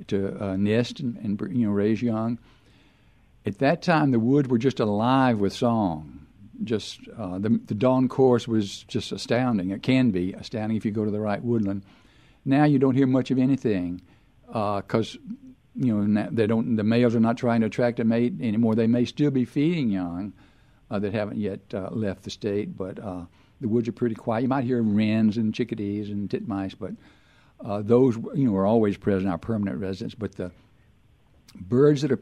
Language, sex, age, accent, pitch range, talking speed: English, male, 60-79, American, 105-130 Hz, 200 wpm